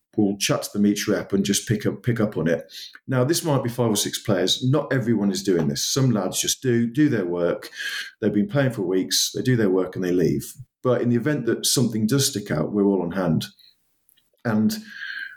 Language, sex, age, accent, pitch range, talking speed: English, male, 40-59, British, 100-125 Hz, 235 wpm